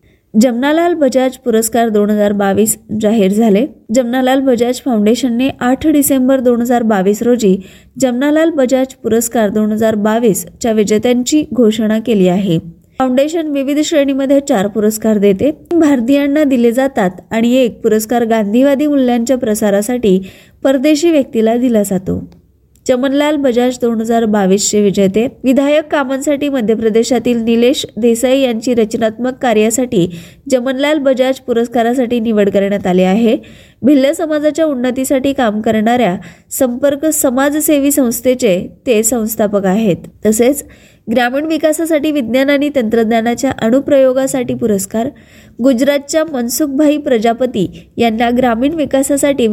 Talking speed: 100 wpm